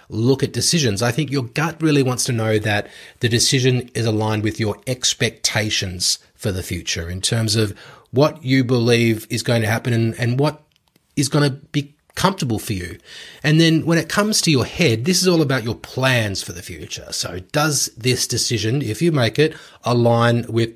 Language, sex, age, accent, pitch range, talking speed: English, male, 30-49, Australian, 105-140 Hz, 200 wpm